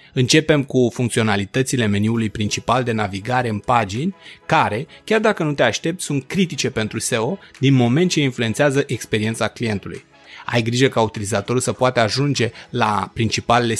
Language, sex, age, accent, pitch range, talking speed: Romanian, male, 30-49, native, 110-145 Hz, 150 wpm